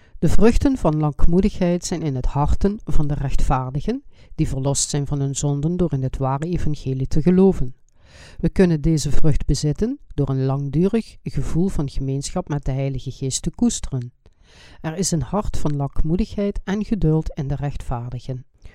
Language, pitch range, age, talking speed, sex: Dutch, 135-165 Hz, 50-69, 165 wpm, female